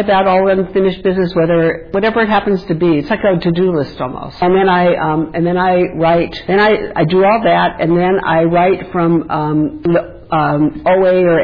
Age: 60-79